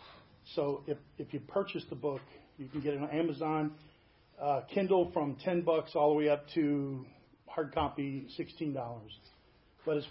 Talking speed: 165 wpm